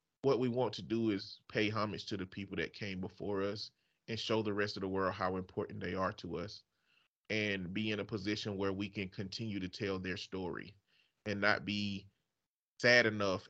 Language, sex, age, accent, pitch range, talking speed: English, male, 30-49, American, 95-110 Hz, 205 wpm